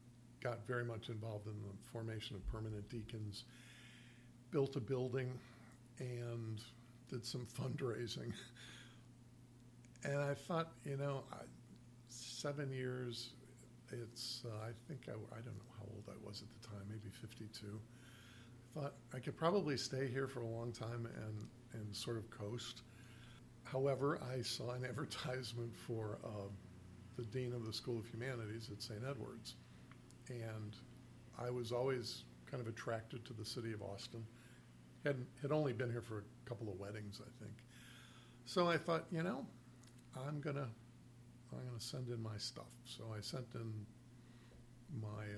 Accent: American